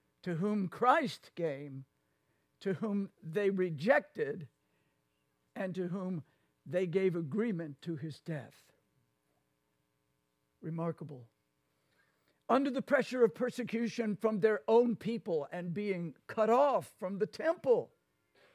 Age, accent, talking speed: 60-79, American, 110 wpm